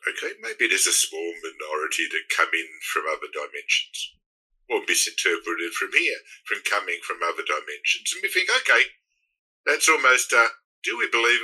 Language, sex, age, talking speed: English, male, 50-69, 165 wpm